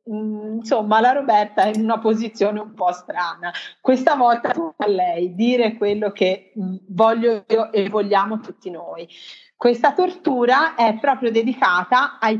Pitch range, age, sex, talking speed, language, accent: 195-250 Hz, 30-49, female, 135 wpm, Italian, native